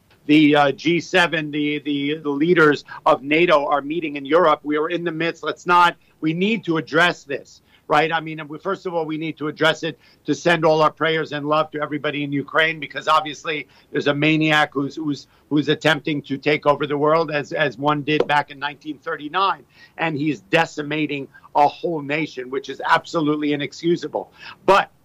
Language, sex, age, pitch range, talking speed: German, male, 50-69, 150-180 Hz, 190 wpm